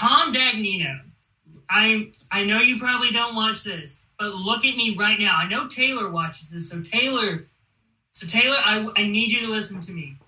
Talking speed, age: 195 wpm, 20-39